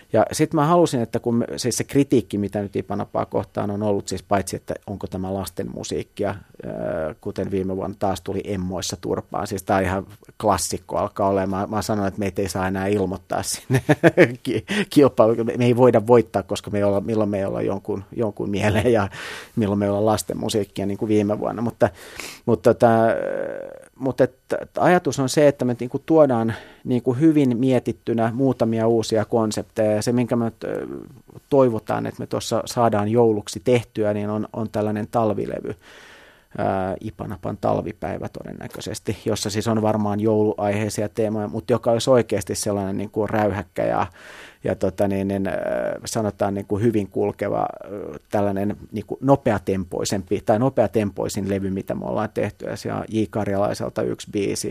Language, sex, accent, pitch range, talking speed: Finnish, male, native, 100-120 Hz, 165 wpm